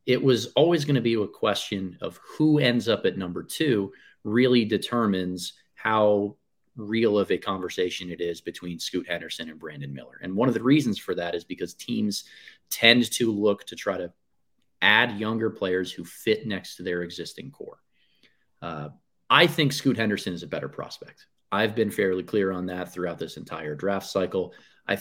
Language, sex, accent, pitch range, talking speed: English, male, American, 90-110 Hz, 185 wpm